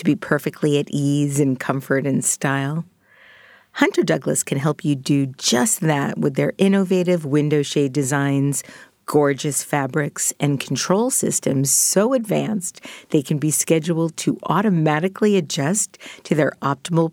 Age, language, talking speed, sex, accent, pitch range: 50-69, English, 140 wpm, female, American, 145-195 Hz